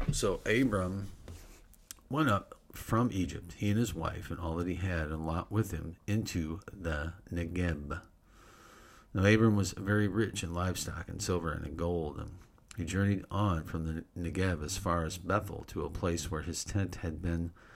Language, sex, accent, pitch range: English, male, American, 85-105 Hz